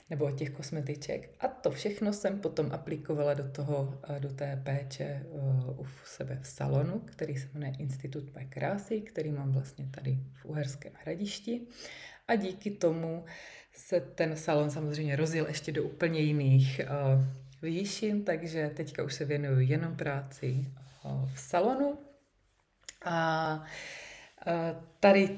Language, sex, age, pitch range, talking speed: Czech, female, 20-39, 140-165 Hz, 135 wpm